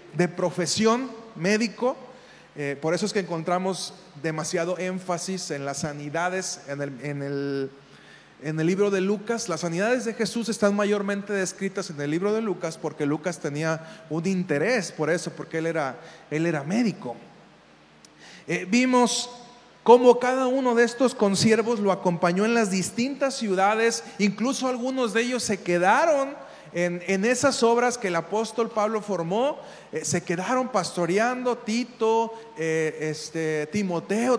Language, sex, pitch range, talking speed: Spanish, male, 160-225 Hz, 145 wpm